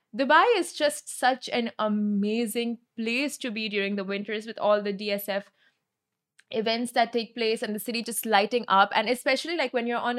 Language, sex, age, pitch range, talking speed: Arabic, female, 20-39, 200-245 Hz, 190 wpm